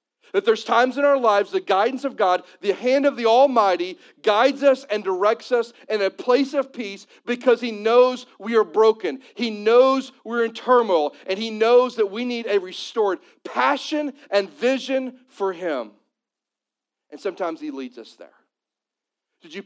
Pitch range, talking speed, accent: 185-250 Hz, 175 wpm, American